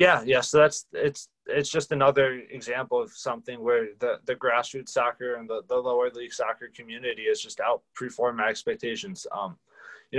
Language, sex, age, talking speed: English, male, 20-39, 175 wpm